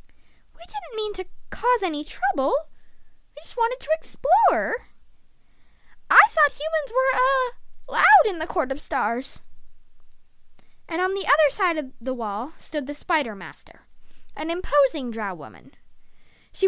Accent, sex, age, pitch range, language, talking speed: American, female, 20-39, 250-370 Hz, English, 145 wpm